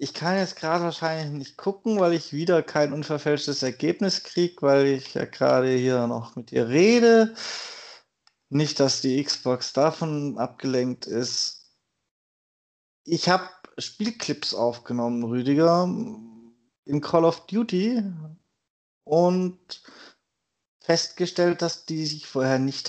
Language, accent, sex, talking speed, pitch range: German, German, male, 120 wpm, 130-175 Hz